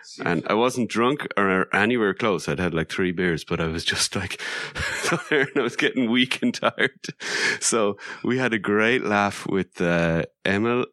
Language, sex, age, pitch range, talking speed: English, male, 30-49, 85-105 Hz, 175 wpm